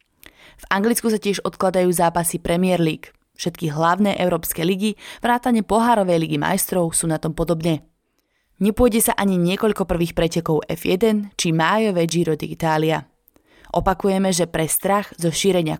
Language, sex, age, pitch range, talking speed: Slovak, female, 20-39, 160-200 Hz, 140 wpm